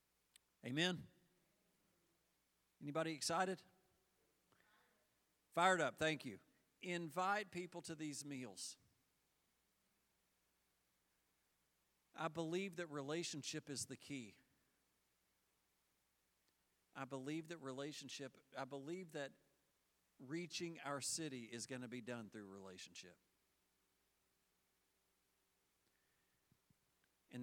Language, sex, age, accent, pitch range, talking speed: English, male, 50-69, American, 95-135 Hz, 80 wpm